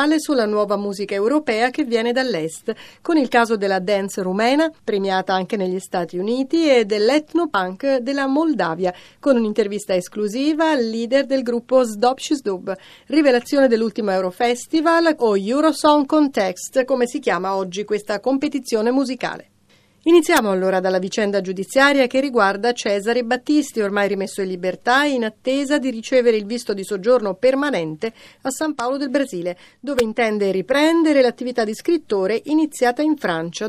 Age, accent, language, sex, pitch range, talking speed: 40-59, native, Italian, female, 200-270 Hz, 140 wpm